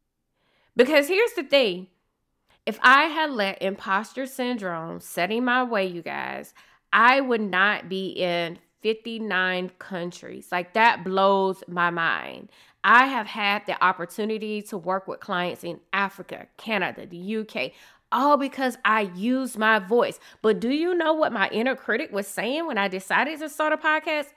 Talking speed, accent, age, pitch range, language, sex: 160 wpm, American, 20-39, 195-290 Hz, English, female